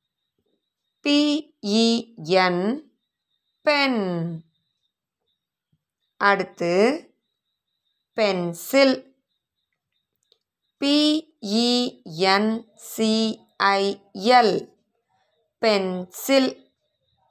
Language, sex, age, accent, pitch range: Tamil, female, 20-39, native, 180-245 Hz